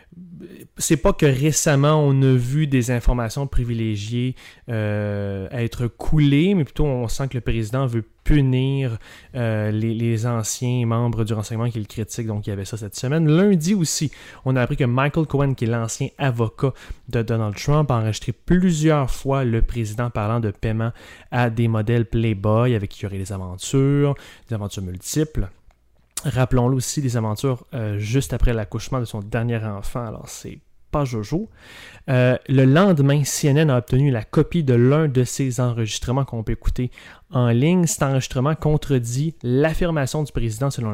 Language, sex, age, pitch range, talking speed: French, male, 20-39, 115-145 Hz, 175 wpm